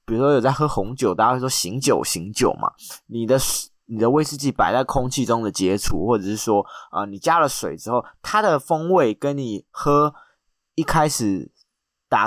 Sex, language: male, Chinese